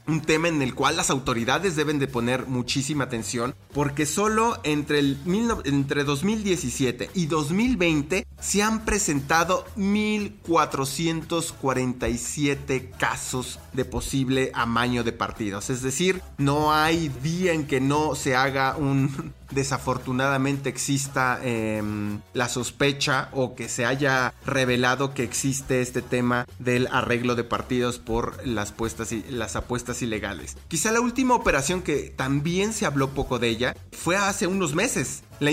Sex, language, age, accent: male, English, 30-49, Mexican